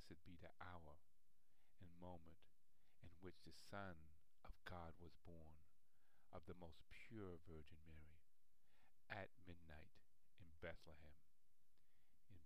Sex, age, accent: male, 50-69, American